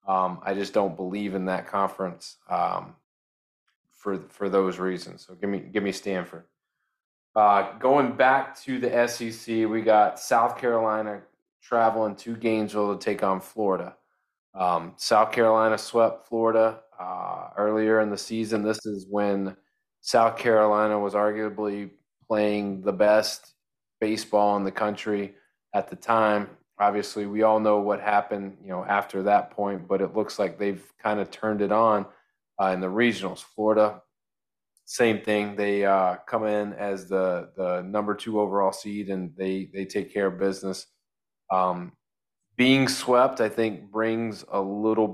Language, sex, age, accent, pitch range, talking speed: English, male, 20-39, American, 95-110 Hz, 155 wpm